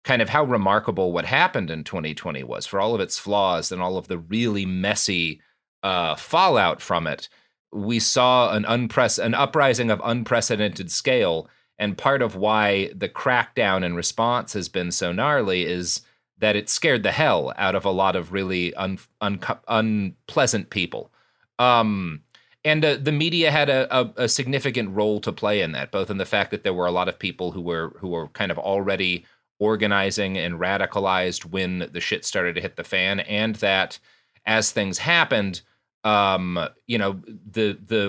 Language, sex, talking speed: English, male, 180 wpm